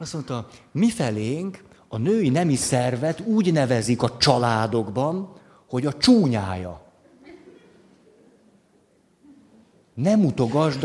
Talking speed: 90 wpm